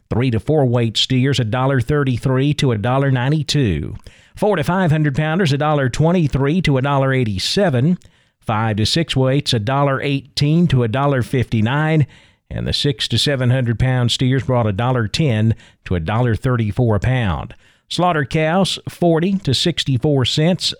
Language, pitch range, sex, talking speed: English, 120-155 Hz, male, 120 wpm